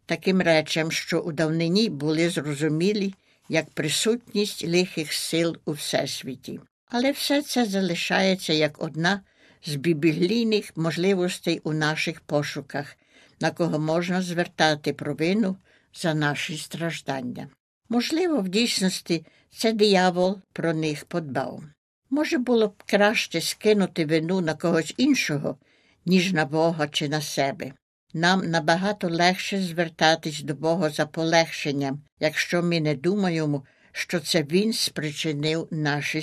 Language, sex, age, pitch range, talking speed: Ukrainian, female, 60-79, 155-195 Hz, 120 wpm